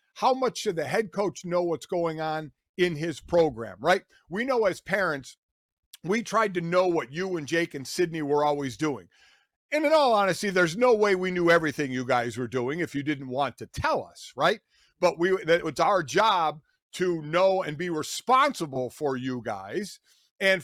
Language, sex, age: English, male, 50-69